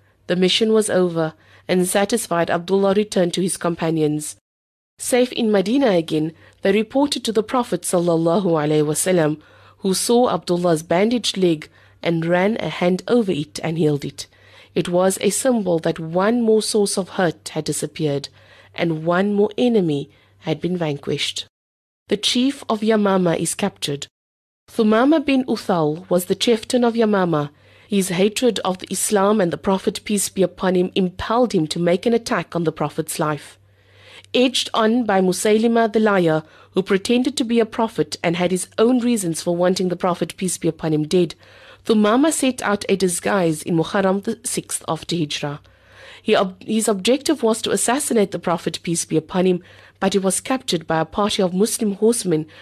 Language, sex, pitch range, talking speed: English, female, 160-220 Hz, 165 wpm